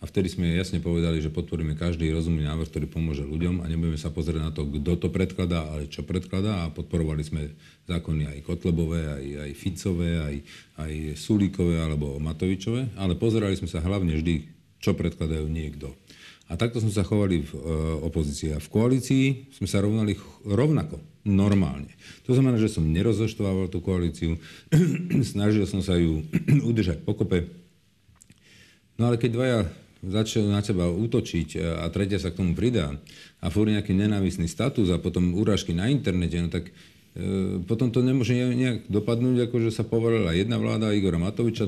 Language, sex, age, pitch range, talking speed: Slovak, male, 50-69, 80-105 Hz, 170 wpm